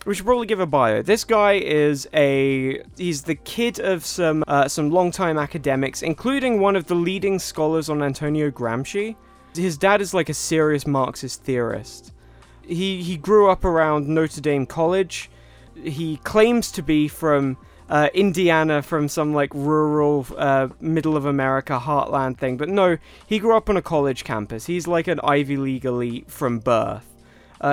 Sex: male